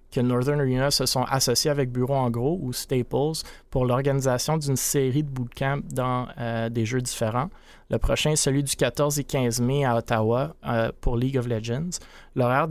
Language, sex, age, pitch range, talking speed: French, male, 30-49, 120-140 Hz, 190 wpm